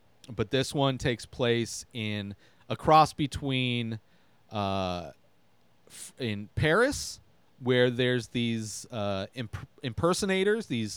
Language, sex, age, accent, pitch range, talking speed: English, male, 30-49, American, 110-150 Hz, 100 wpm